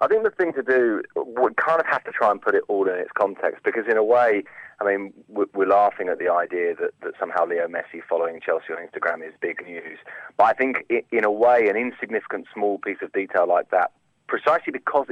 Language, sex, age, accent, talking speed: English, male, 30-49, British, 230 wpm